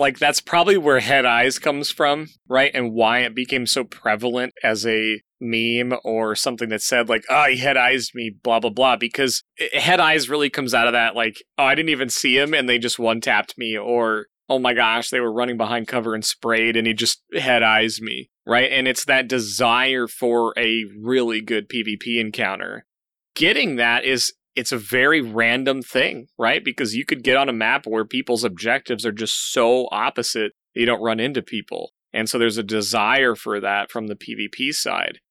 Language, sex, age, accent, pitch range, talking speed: English, male, 20-39, American, 115-130 Hz, 200 wpm